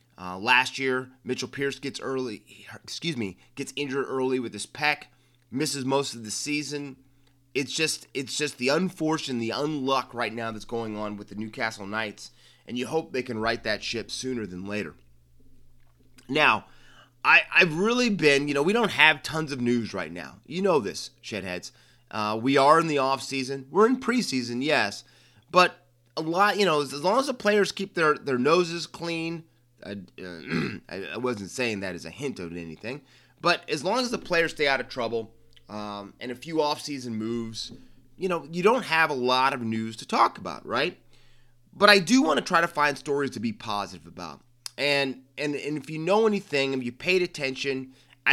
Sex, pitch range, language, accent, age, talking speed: male, 115-150 Hz, English, American, 30-49, 195 wpm